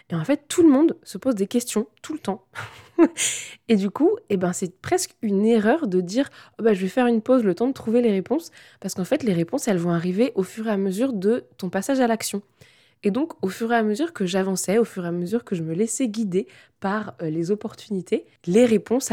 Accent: French